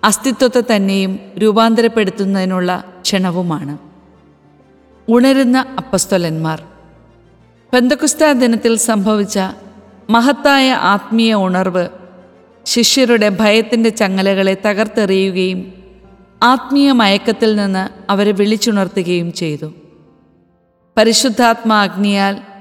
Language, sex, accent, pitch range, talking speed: Malayalam, female, native, 190-235 Hz, 60 wpm